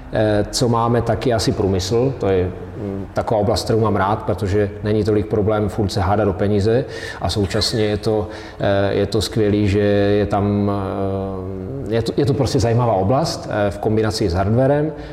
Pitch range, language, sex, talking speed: 105-115 Hz, Czech, male, 160 wpm